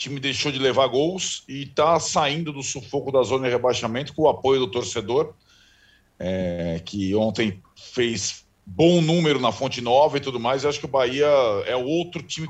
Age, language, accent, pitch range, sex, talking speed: 40-59, Portuguese, Brazilian, 115-175 Hz, male, 185 wpm